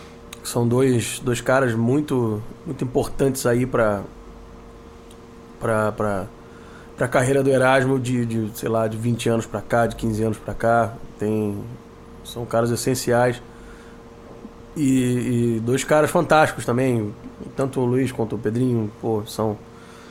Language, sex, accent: Portuguese, male, Brazilian